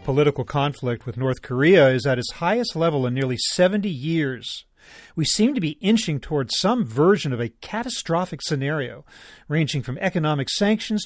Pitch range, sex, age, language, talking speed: 130-195 Hz, male, 40-59, English, 165 wpm